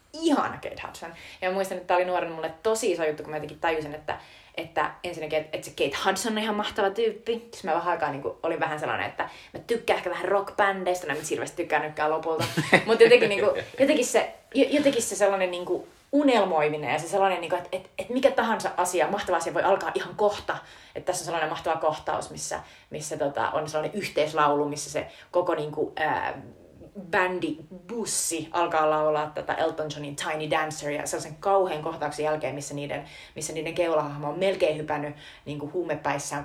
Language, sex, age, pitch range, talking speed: Finnish, female, 20-39, 150-195 Hz, 190 wpm